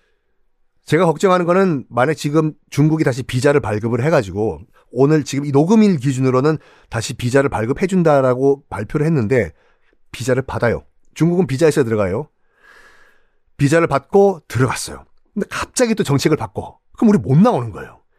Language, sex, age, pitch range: Korean, male, 40-59, 120-190 Hz